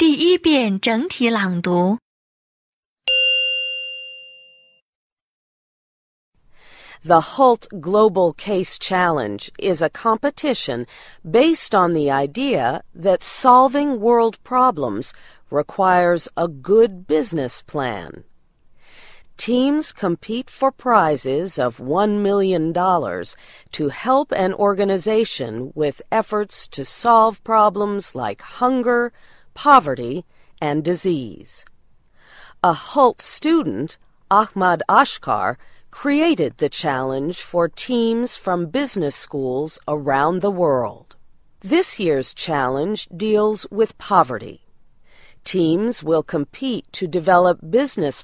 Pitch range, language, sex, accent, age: 160-235 Hz, Chinese, female, American, 40-59